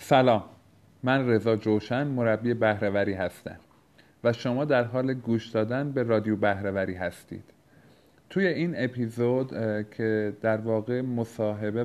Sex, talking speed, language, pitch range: male, 120 wpm, Persian, 100-115 Hz